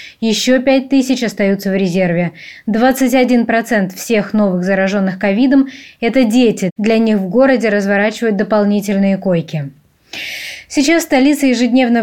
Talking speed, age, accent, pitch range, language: 110 wpm, 20-39, native, 200-250 Hz, Russian